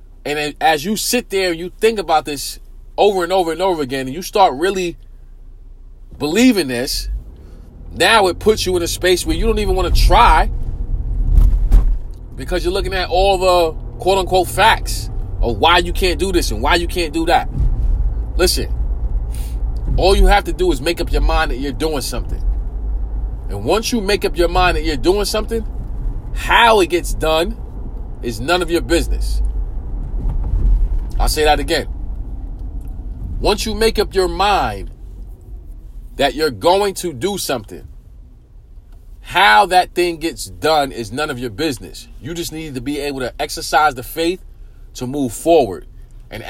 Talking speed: 170 wpm